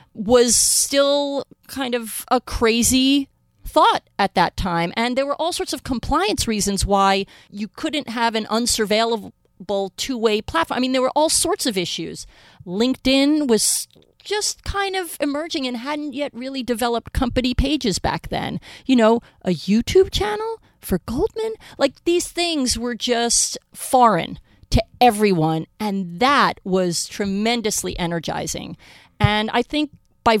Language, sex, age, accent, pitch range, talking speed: English, female, 30-49, American, 200-265 Hz, 145 wpm